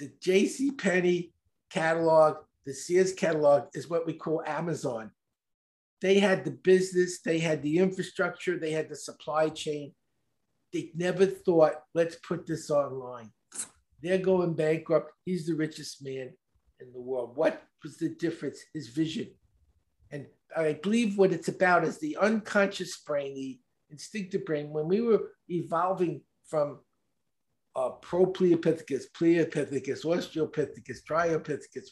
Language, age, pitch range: English, 50-69, 150-180 Hz